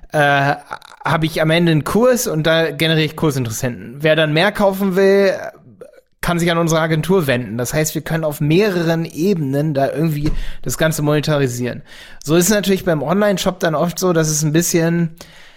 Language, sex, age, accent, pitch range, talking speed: German, male, 30-49, German, 135-165 Hz, 185 wpm